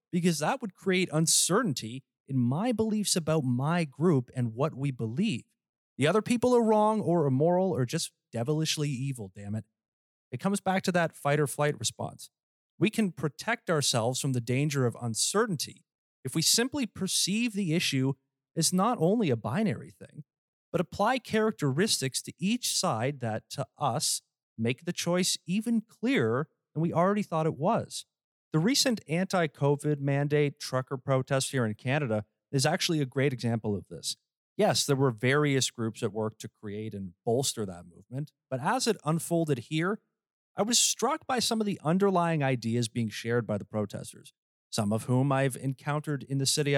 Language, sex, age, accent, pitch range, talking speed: English, male, 30-49, American, 125-190 Hz, 170 wpm